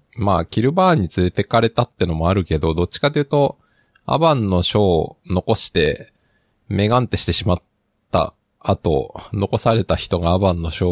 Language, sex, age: Japanese, male, 20-39